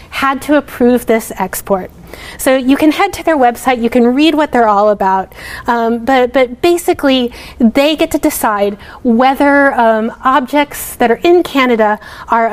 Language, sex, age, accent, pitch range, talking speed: English, female, 30-49, American, 220-275 Hz, 170 wpm